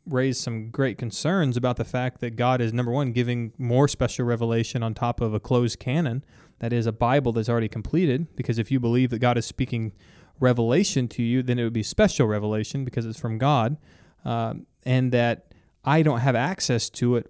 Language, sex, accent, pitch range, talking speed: English, male, American, 115-140 Hz, 205 wpm